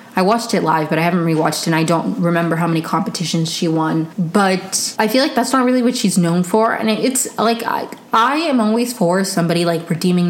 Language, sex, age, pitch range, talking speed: English, female, 20-39, 170-220 Hz, 235 wpm